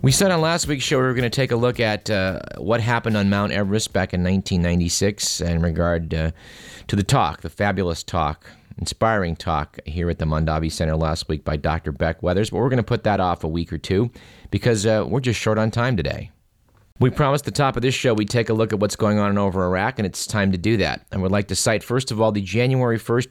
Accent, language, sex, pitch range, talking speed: American, English, male, 90-120 Hz, 255 wpm